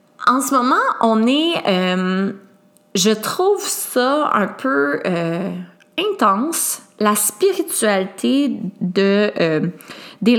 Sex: female